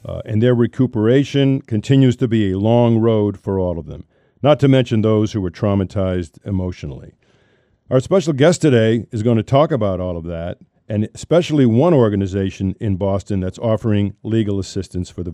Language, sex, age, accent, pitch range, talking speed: English, male, 50-69, American, 100-130 Hz, 180 wpm